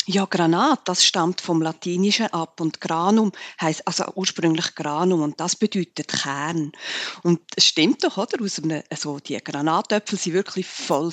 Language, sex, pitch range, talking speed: German, female, 160-220 Hz, 150 wpm